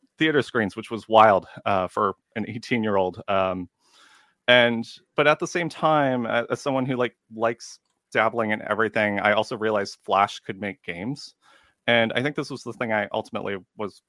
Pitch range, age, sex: 100-120 Hz, 30-49, male